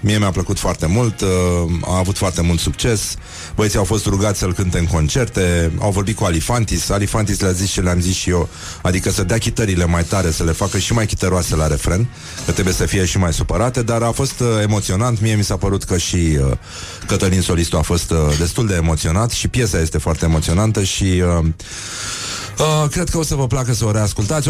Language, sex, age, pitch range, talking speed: Romanian, male, 30-49, 80-105 Hz, 210 wpm